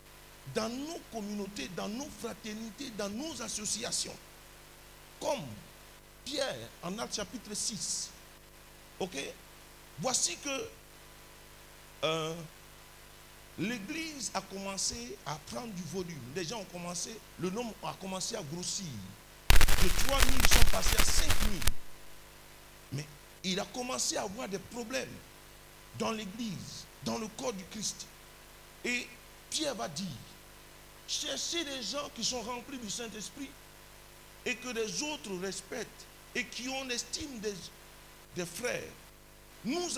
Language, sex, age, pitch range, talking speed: French, male, 50-69, 185-250 Hz, 125 wpm